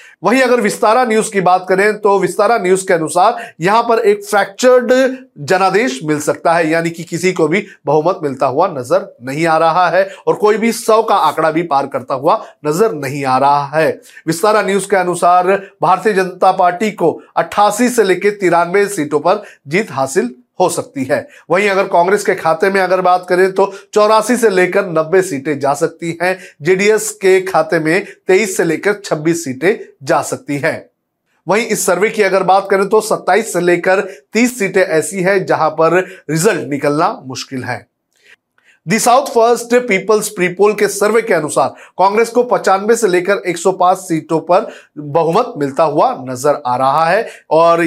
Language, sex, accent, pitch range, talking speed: Hindi, male, native, 165-205 Hz, 180 wpm